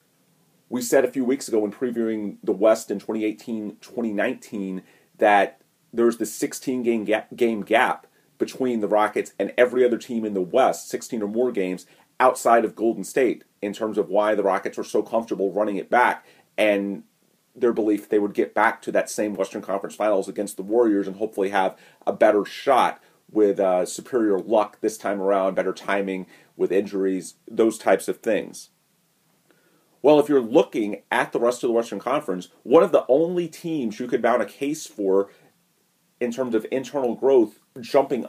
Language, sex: English, male